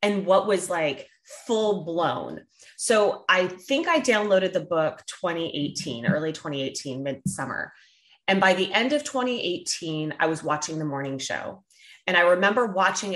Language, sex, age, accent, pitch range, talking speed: English, female, 30-49, American, 155-190 Hz, 155 wpm